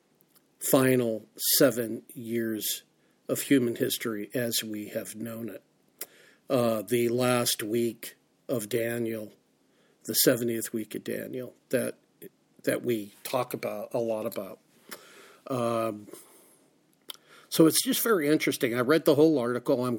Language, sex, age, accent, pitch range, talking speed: English, male, 50-69, American, 115-135 Hz, 125 wpm